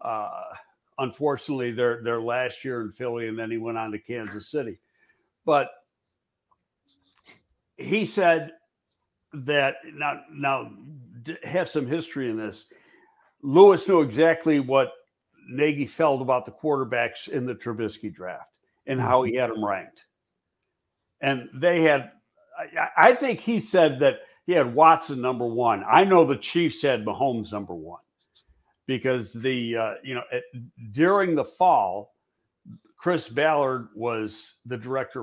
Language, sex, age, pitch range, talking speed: English, male, 60-79, 115-155 Hz, 145 wpm